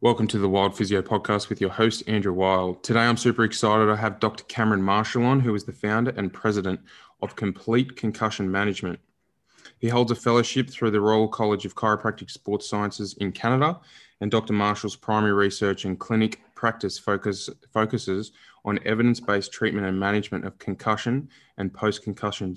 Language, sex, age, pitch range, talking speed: English, male, 20-39, 100-110 Hz, 170 wpm